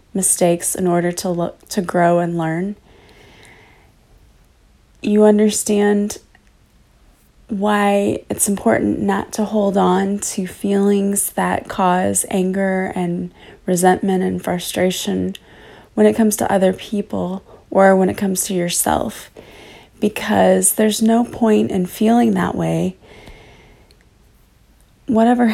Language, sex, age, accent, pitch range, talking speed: English, female, 30-49, American, 180-210 Hz, 115 wpm